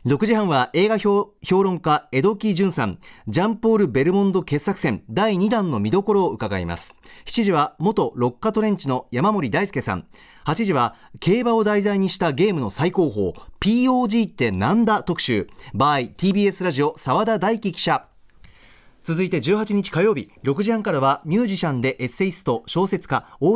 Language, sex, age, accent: Japanese, male, 40-59, native